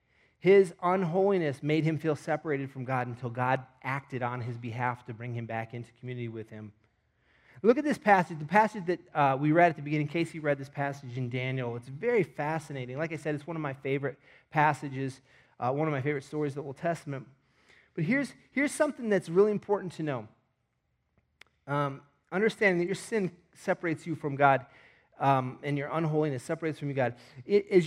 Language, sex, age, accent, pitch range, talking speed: English, male, 30-49, American, 135-180 Hz, 195 wpm